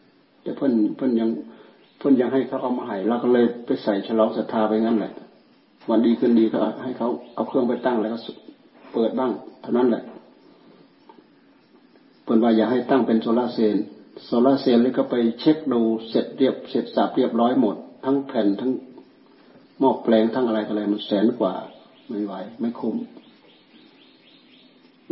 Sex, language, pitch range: male, Thai, 110-140 Hz